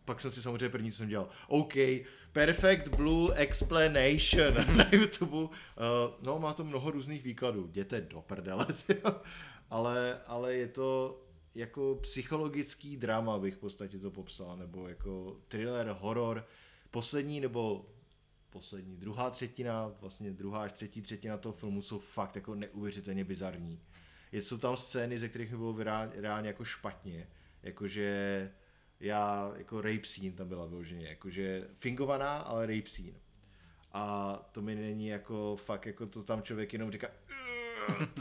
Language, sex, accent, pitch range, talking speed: Czech, male, native, 100-130 Hz, 150 wpm